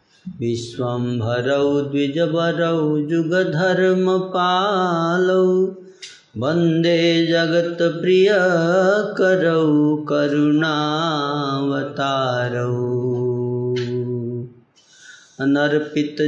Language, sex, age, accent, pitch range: Hindi, male, 30-49, native, 120-150 Hz